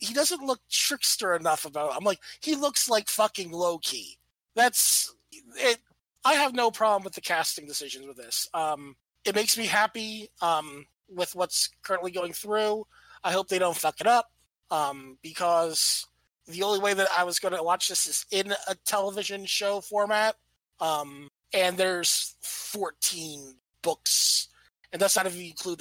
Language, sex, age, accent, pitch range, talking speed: English, male, 30-49, American, 165-205 Hz, 170 wpm